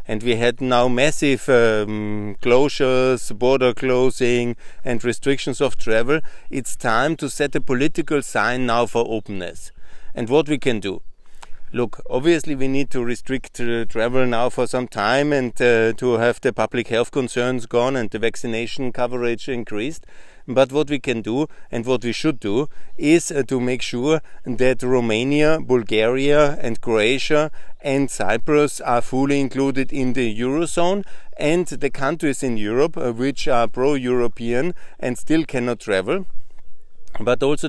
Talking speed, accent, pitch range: 155 wpm, German, 115-135 Hz